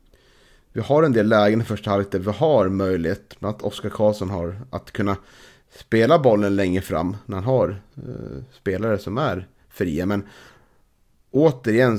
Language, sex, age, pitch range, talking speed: Swedish, male, 30-49, 95-120 Hz, 165 wpm